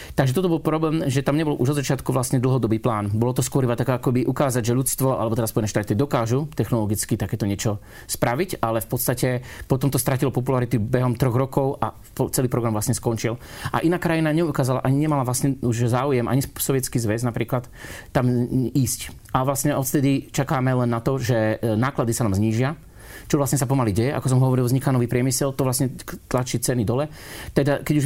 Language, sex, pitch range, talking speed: Slovak, male, 115-140 Hz, 190 wpm